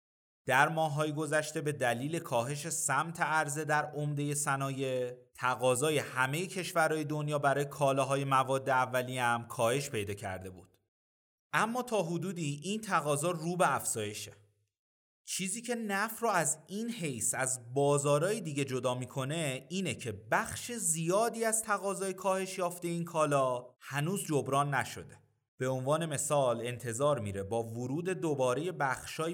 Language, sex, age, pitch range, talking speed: Persian, male, 30-49, 125-170 Hz, 135 wpm